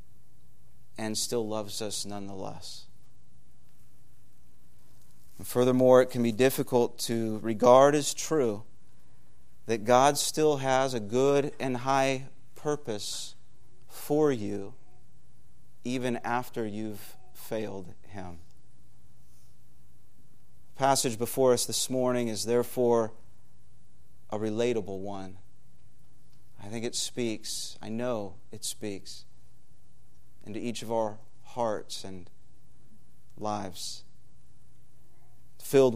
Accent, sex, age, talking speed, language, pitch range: American, male, 30-49, 95 wpm, English, 100-125 Hz